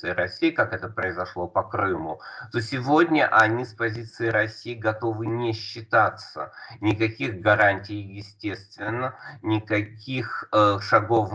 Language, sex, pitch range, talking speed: Russian, male, 100-115 Hz, 110 wpm